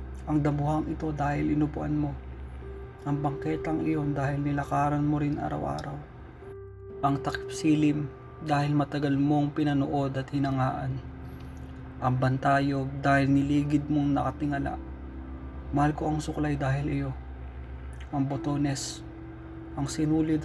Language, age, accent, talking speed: Filipino, 20-39, native, 110 wpm